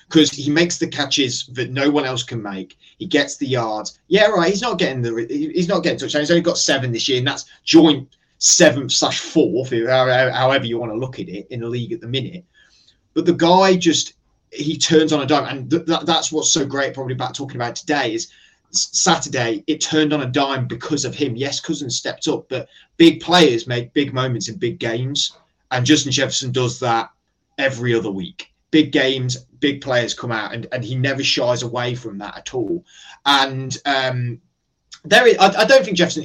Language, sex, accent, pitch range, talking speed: English, male, British, 125-155 Hz, 205 wpm